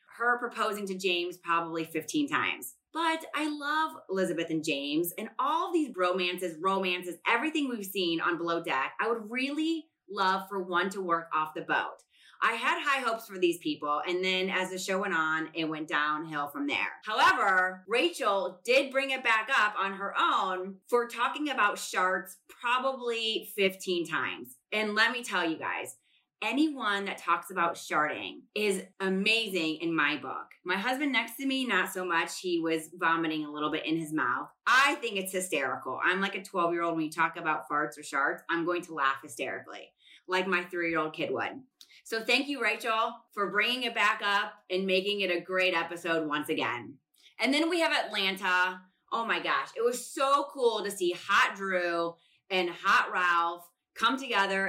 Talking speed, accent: 185 wpm, American